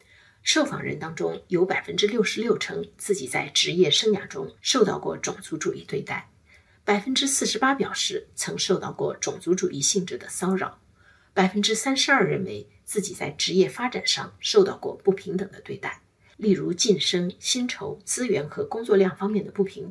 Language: Chinese